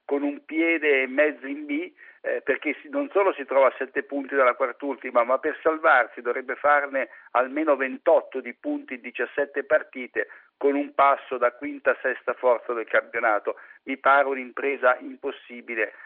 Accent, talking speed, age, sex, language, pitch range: native, 170 wpm, 50-69, male, Italian, 130-170 Hz